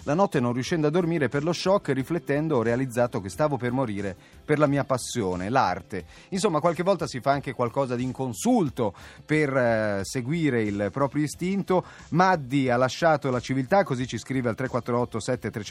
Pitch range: 110-150 Hz